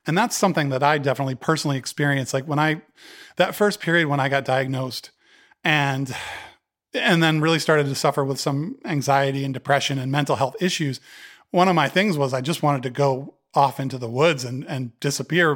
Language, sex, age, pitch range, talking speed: English, male, 30-49, 130-165 Hz, 195 wpm